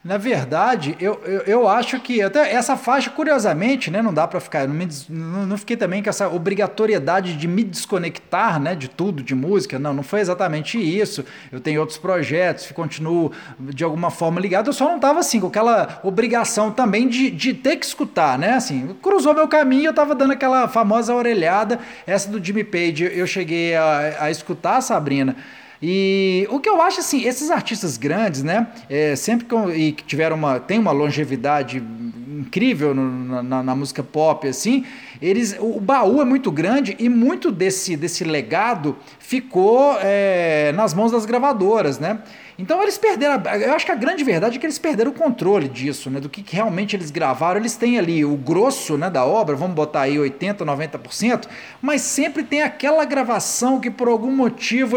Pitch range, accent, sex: 160-240 Hz, Brazilian, male